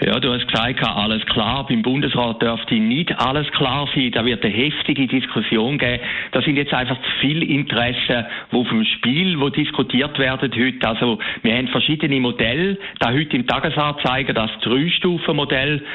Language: German